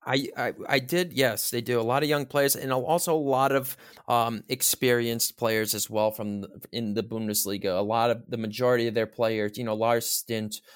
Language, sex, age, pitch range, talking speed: English, male, 20-39, 110-130 Hz, 220 wpm